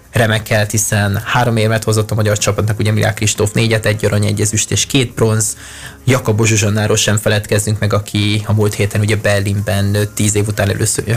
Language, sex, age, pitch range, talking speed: Hungarian, male, 20-39, 105-110 Hz, 165 wpm